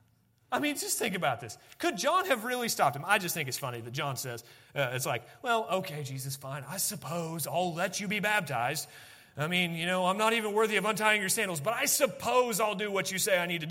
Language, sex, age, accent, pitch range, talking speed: English, male, 30-49, American, 145-210 Hz, 250 wpm